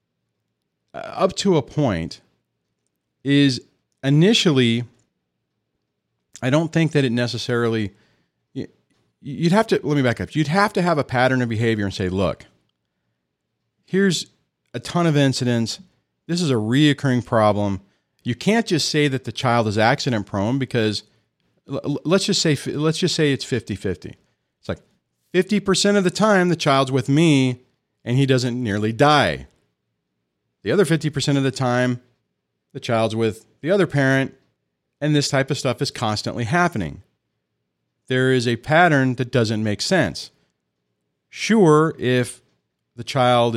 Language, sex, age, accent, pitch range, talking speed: English, male, 40-59, American, 105-145 Hz, 145 wpm